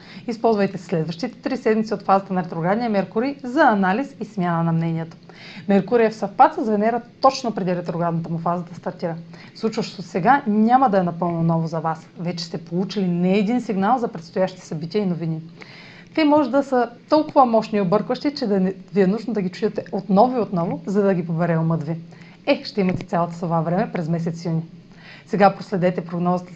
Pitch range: 170-225 Hz